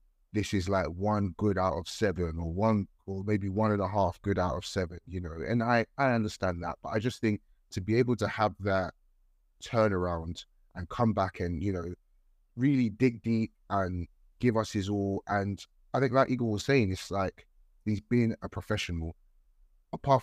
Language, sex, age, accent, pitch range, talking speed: English, male, 30-49, British, 90-110 Hz, 195 wpm